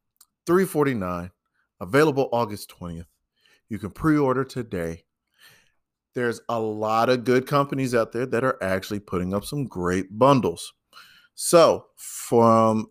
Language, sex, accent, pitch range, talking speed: English, male, American, 105-165 Hz, 120 wpm